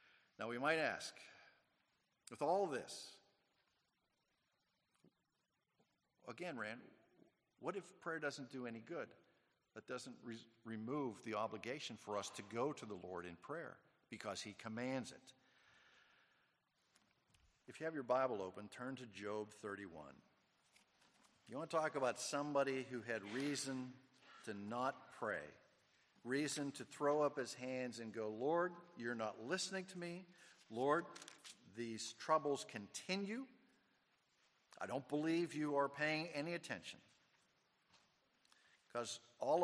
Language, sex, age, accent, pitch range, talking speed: English, male, 50-69, American, 115-155 Hz, 125 wpm